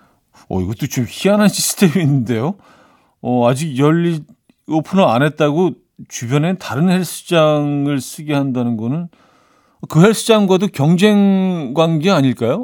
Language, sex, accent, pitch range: Korean, male, native, 110-155 Hz